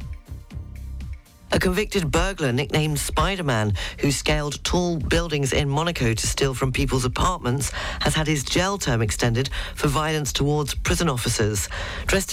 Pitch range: 105-155 Hz